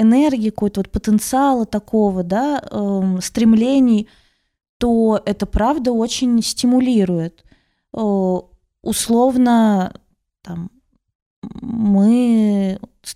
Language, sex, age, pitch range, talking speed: Russian, female, 20-39, 200-235 Hz, 80 wpm